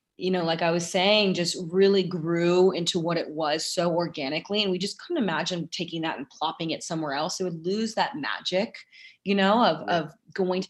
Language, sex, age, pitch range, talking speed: English, female, 20-39, 165-190 Hz, 215 wpm